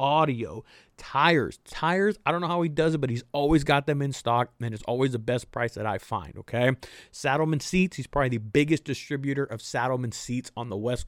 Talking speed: 215 wpm